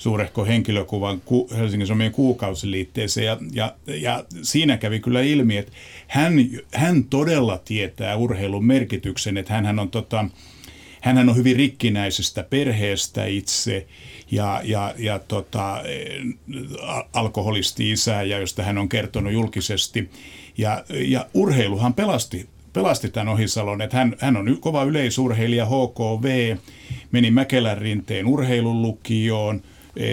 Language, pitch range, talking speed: Finnish, 100-125 Hz, 110 wpm